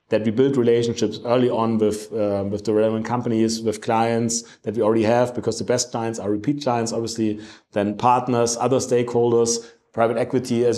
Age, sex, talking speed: 30-49, male, 185 wpm